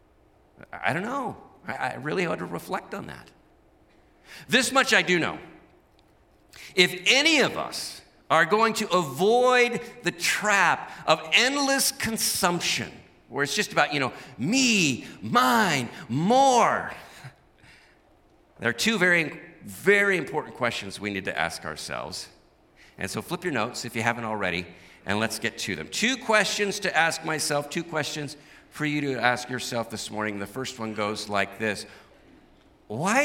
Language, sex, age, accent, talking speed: English, male, 50-69, American, 150 wpm